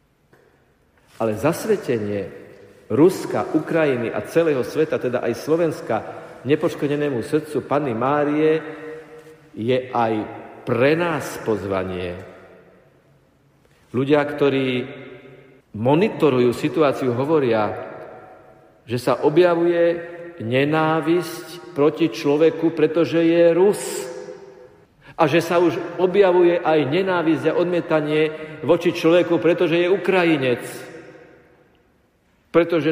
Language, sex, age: Slovak, male, 50-69